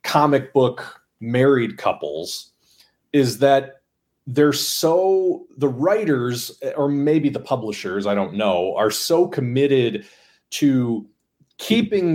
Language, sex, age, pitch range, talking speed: English, male, 30-49, 125-160 Hz, 110 wpm